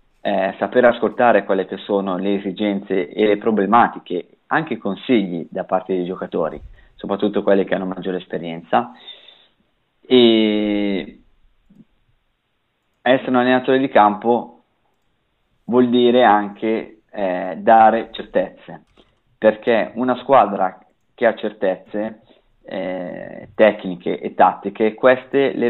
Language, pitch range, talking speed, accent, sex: Italian, 100-120 Hz, 110 wpm, native, male